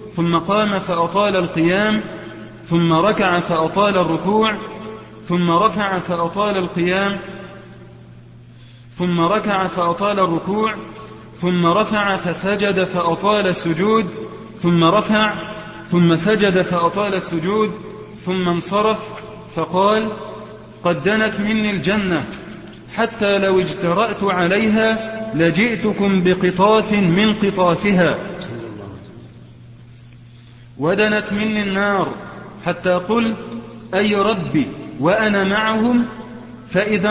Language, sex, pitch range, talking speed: Arabic, male, 175-215 Hz, 85 wpm